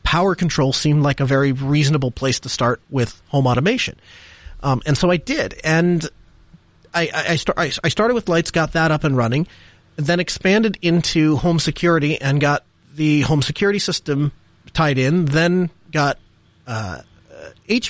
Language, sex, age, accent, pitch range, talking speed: English, male, 30-49, American, 140-175 Hz, 165 wpm